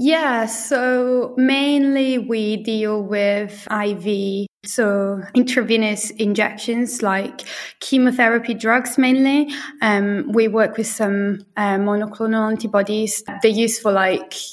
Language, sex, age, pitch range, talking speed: English, female, 20-39, 200-235 Hz, 105 wpm